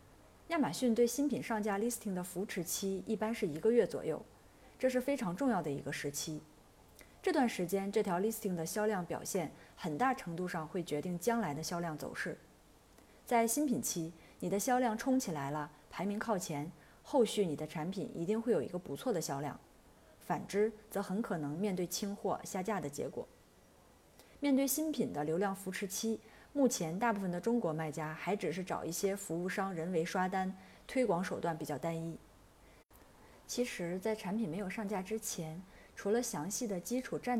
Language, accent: Chinese, native